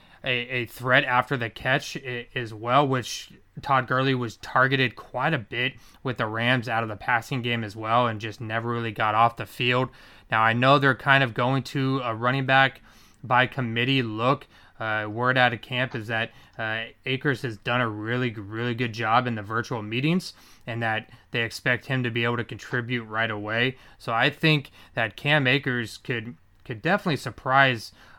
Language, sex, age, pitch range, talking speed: English, male, 20-39, 110-130 Hz, 190 wpm